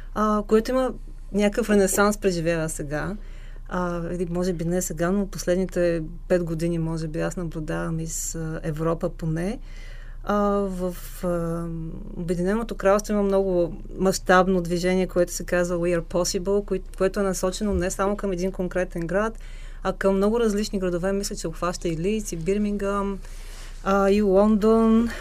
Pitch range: 175-205 Hz